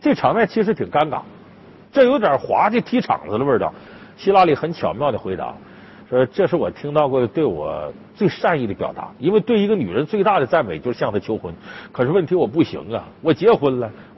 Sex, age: male, 50-69